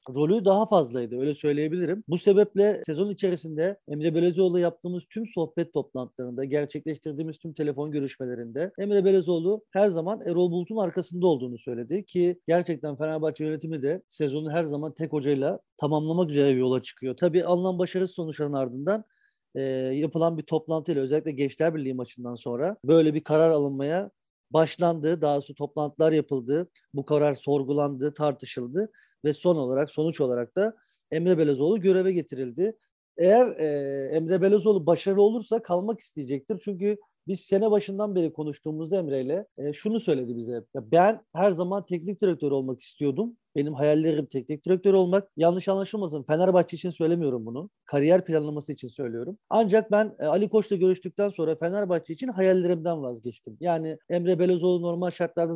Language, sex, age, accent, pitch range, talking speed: Turkish, male, 40-59, native, 150-190 Hz, 145 wpm